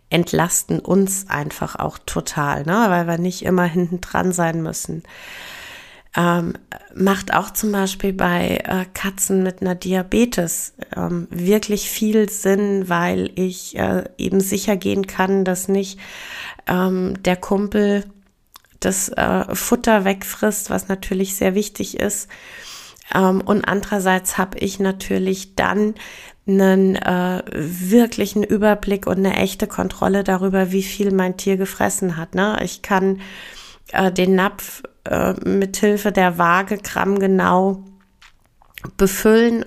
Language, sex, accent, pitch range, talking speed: German, female, German, 185-200 Hz, 125 wpm